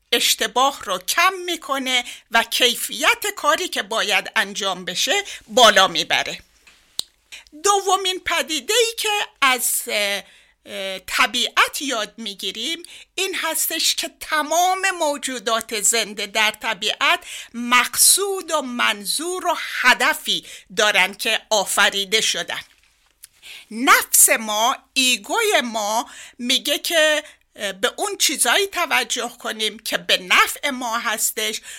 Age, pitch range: 60-79, 220-325 Hz